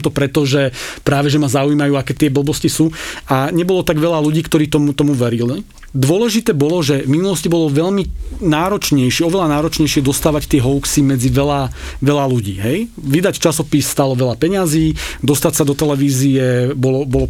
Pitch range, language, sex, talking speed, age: 135-165 Hz, Slovak, male, 165 wpm, 40-59